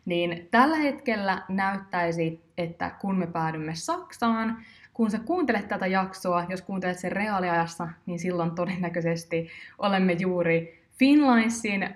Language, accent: Finnish, native